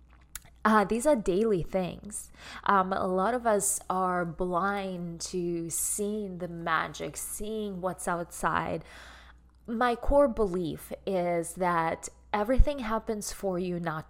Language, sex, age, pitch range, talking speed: English, female, 20-39, 185-225 Hz, 125 wpm